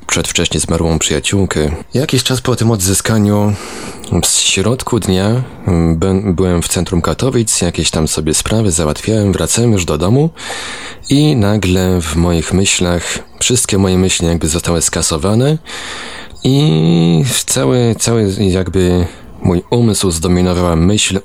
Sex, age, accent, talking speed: male, 30-49, native, 120 wpm